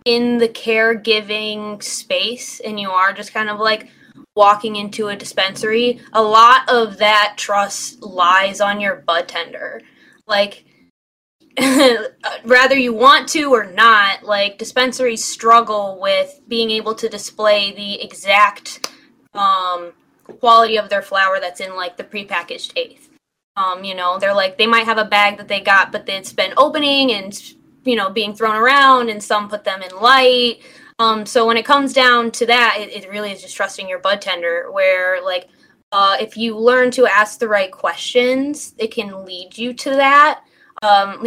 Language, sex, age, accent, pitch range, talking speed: English, female, 10-29, American, 195-240 Hz, 170 wpm